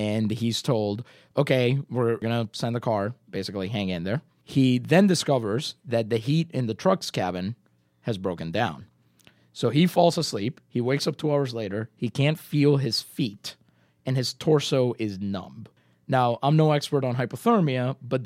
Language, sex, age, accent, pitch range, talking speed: English, male, 30-49, American, 110-140 Hz, 180 wpm